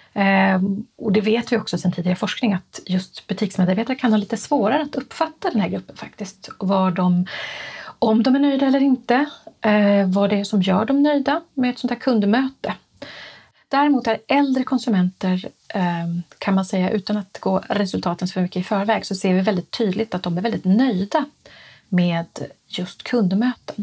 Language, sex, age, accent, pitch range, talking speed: Swedish, female, 30-49, native, 190-245 Hz, 180 wpm